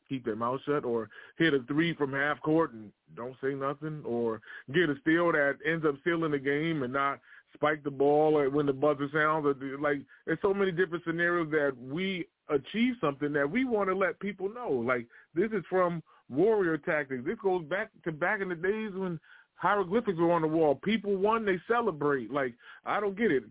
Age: 20-39